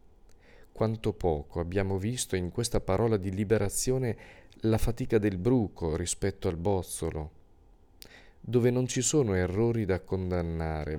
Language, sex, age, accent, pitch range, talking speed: Italian, male, 40-59, native, 90-110 Hz, 125 wpm